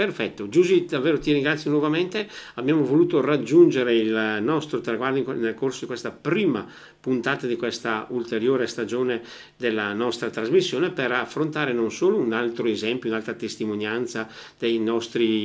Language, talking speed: Italian, 145 wpm